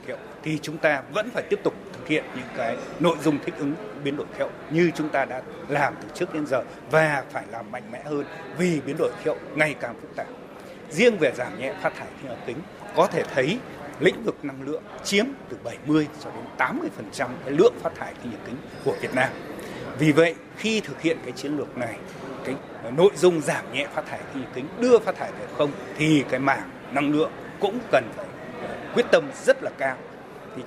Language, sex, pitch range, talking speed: Vietnamese, male, 150-185 Hz, 225 wpm